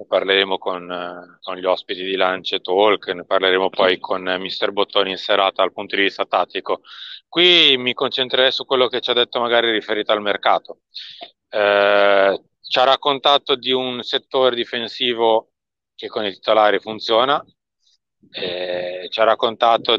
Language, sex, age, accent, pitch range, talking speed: Italian, male, 30-49, native, 100-125 Hz, 160 wpm